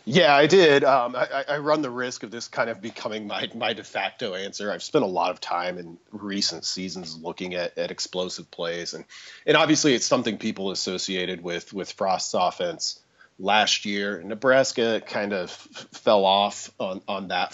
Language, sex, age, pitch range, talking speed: English, male, 30-49, 95-120 Hz, 185 wpm